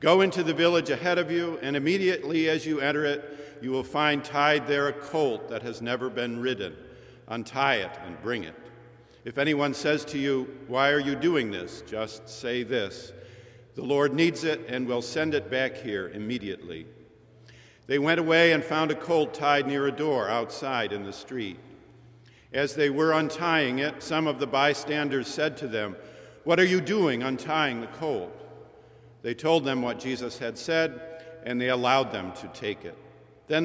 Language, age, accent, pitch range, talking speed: English, 50-69, American, 125-155 Hz, 185 wpm